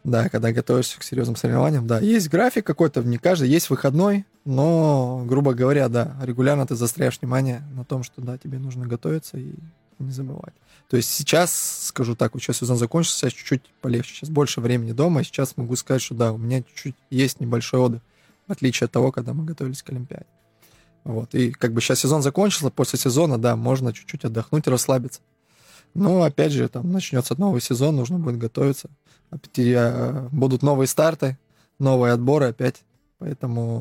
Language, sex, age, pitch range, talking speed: Russian, male, 20-39, 120-145 Hz, 180 wpm